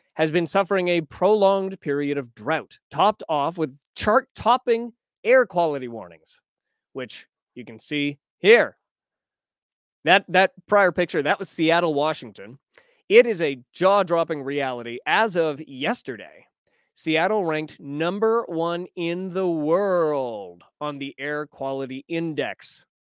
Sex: male